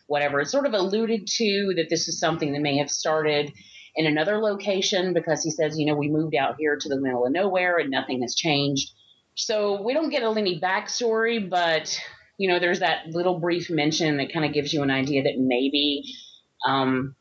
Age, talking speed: 30-49, 210 wpm